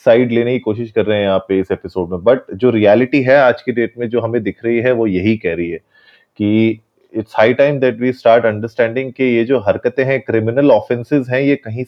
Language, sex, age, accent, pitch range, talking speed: Hindi, male, 30-49, native, 105-125 Hz, 155 wpm